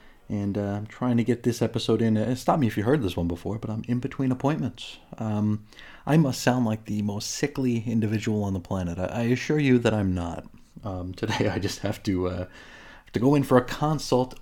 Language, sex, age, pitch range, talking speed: English, male, 30-49, 95-115 Hz, 230 wpm